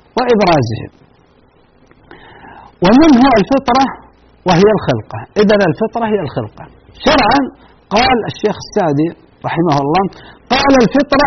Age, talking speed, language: 50-69, 95 wpm, Arabic